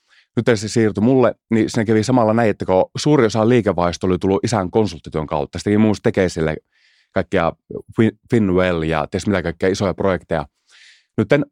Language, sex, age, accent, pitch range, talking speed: Finnish, male, 30-49, native, 85-110 Hz, 160 wpm